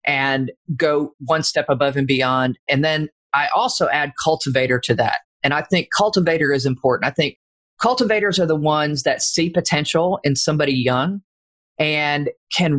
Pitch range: 135-170 Hz